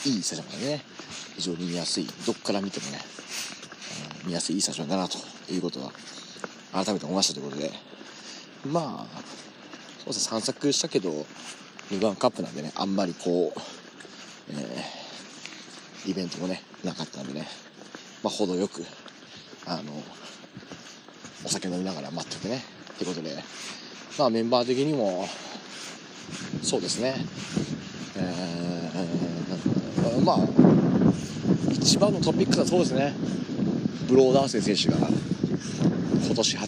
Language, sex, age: Japanese, male, 40-59